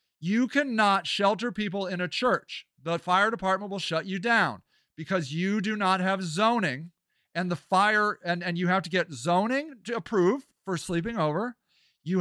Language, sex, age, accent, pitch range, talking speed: English, male, 40-59, American, 175-250 Hz, 175 wpm